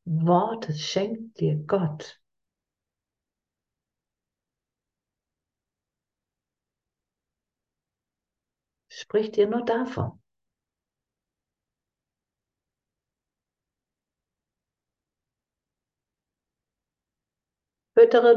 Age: 60-79